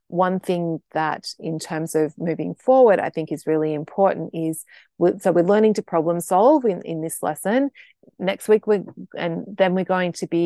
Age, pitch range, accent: 30-49, 160-195 Hz, Australian